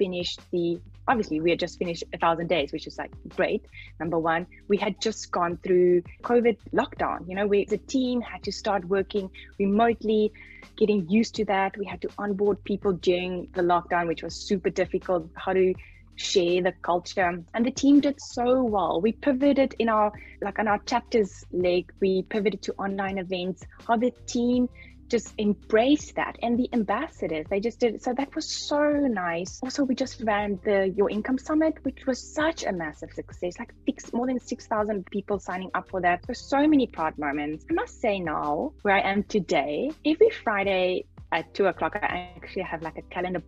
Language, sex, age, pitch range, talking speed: English, female, 20-39, 180-240 Hz, 195 wpm